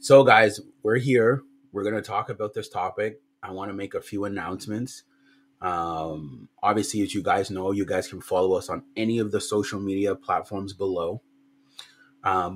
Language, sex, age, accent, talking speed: English, male, 30-49, American, 180 wpm